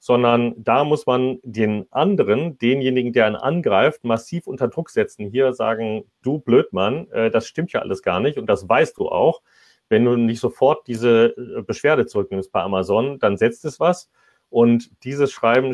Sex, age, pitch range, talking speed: male, 40-59, 105-130 Hz, 170 wpm